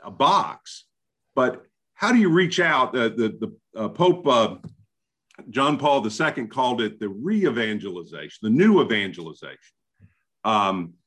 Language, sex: English, male